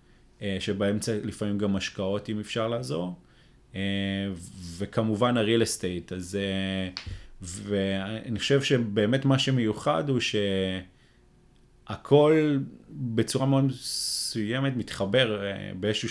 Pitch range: 100-125 Hz